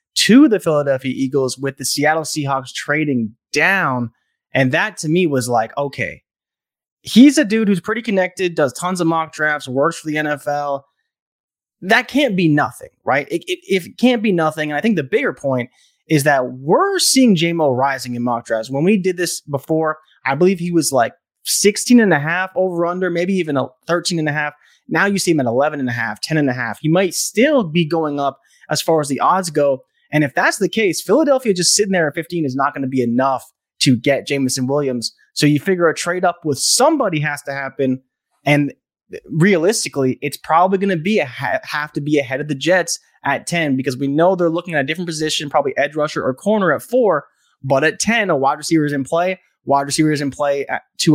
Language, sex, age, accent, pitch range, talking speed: English, male, 20-39, American, 140-185 Hz, 220 wpm